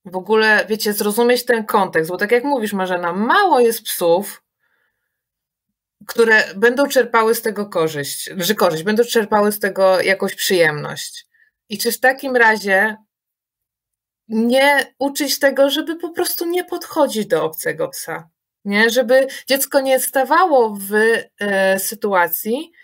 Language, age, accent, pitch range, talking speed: Polish, 20-39, native, 205-280 Hz, 135 wpm